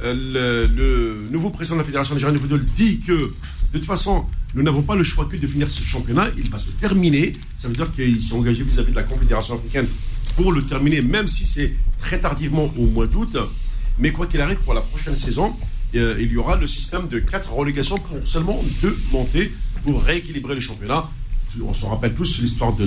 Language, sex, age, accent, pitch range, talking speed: French, male, 50-69, French, 115-150 Hz, 205 wpm